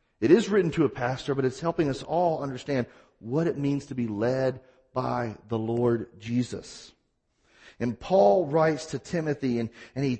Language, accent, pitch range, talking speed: English, American, 125-165 Hz, 175 wpm